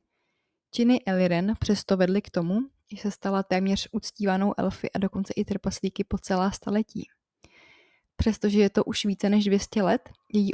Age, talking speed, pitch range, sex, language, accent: 20-39, 160 wpm, 185-210 Hz, female, Czech, native